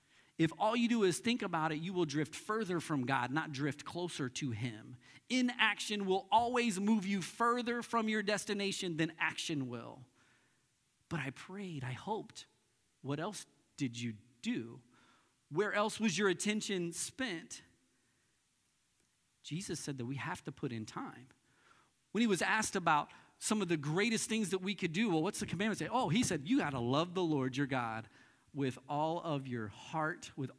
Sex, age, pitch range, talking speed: male, 40-59, 155-215 Hz, 180 wpm